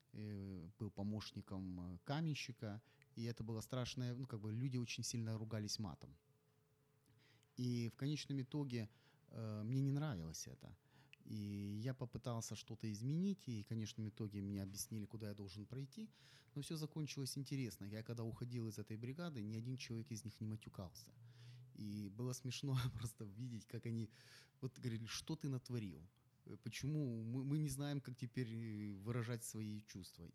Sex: male